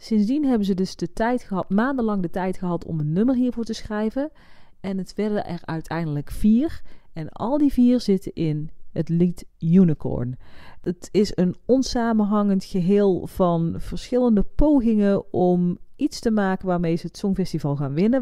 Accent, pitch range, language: Dutch, 175-245 Hz, Dutch